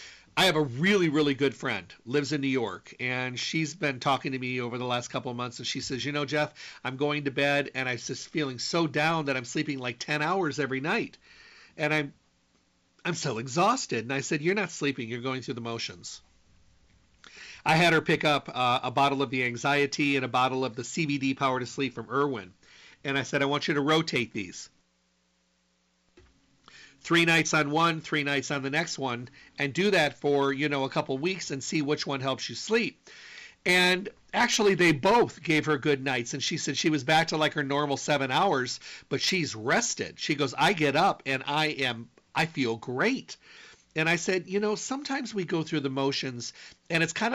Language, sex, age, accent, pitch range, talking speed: English, male, 40-59, American, 130-160 Hz, 215 wpm